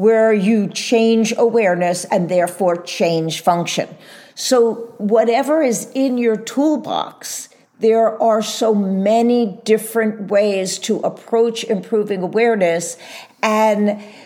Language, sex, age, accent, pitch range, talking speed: English, female, 50-69, American, 185-235 Hz, 105 wpm